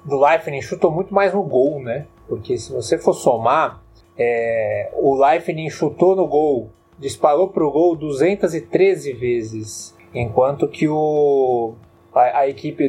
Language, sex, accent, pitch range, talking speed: English, male, Brazilian, 135-190 Hz, 145 wpm